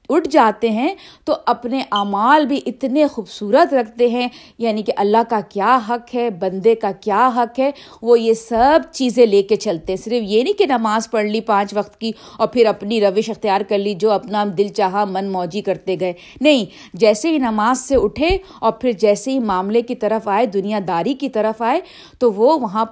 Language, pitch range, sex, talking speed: Urdu, 210-275 Hz, female, 205 wpm